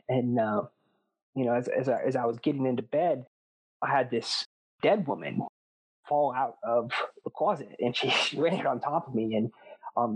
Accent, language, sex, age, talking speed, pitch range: American, English, male, 30-49, 195 wpm, 120-140 Hz